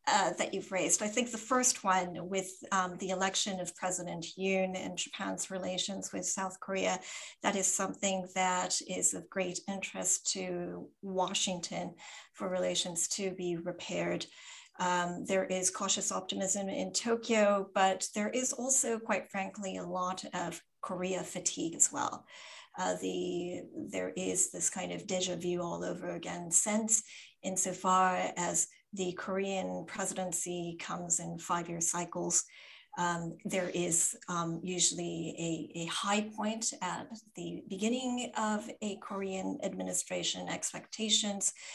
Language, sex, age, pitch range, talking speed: English, female, 40-59, 175-200 Hz, 140 wpm